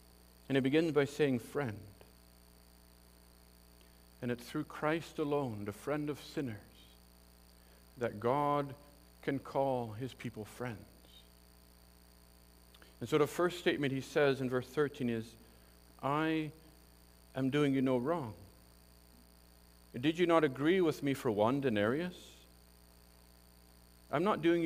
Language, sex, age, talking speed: English, male, 50-69, 125 wpm